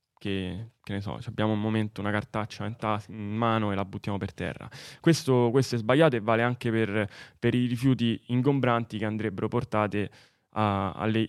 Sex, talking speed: male, 170 wpm